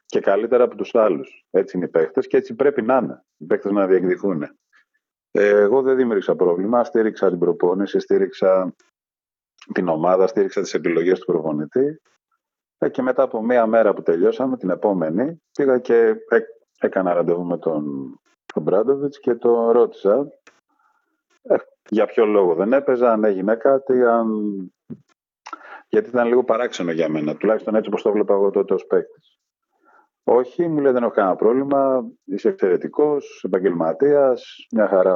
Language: Greek